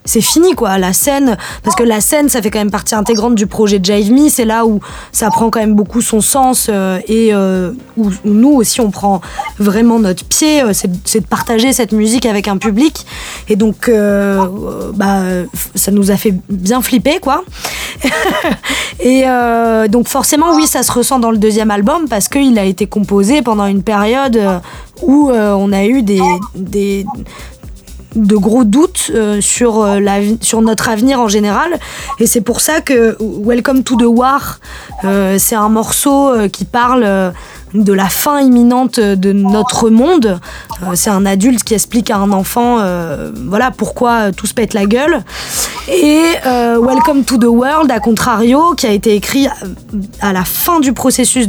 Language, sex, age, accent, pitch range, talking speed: French, female, 20-39, French, 200-250 Hz, 175 wpm